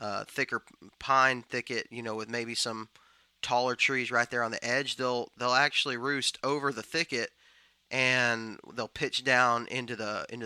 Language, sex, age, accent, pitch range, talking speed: English, male, 20-39, American, 115-135 Hz, 170 wpm